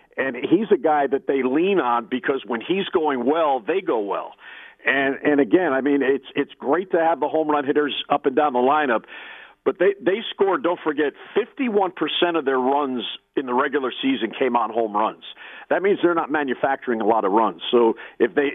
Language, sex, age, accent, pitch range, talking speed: English, male, 50-69, American, 135-185 Hz, 210 wpm